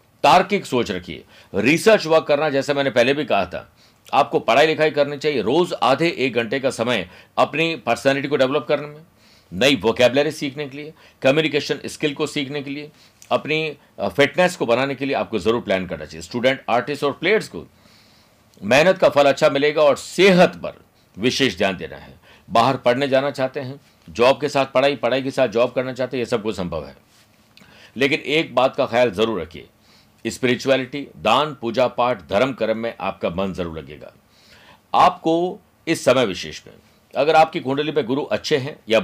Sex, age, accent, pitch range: male, 50-69, native, 120-145 Hz